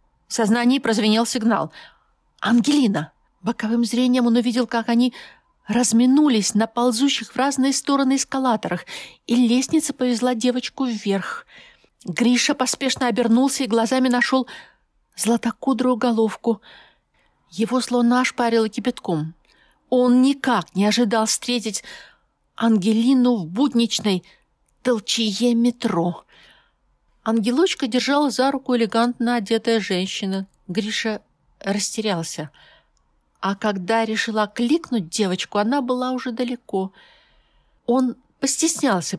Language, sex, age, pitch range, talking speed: Russian, female, 50-69, 215-250 Hz, 100 wpm